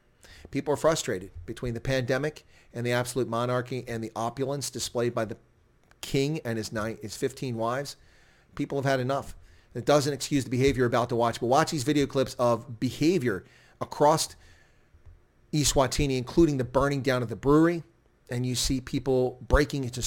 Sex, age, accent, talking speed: male, 40-59, American, 175 wpm